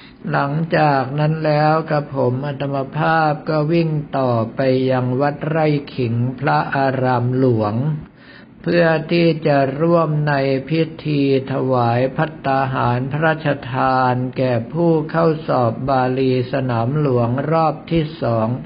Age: 60-79